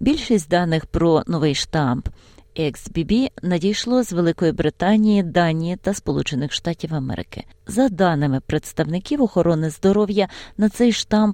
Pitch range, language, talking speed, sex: 145-185 Hz, Ukrainian, 120 wpm, female